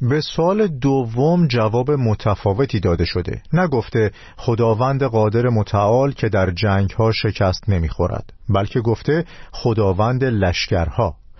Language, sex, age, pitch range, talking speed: Persian, male, 50-69, 100-135 Hz, 120 wpm